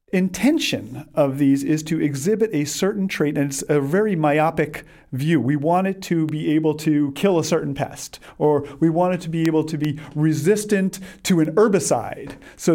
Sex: male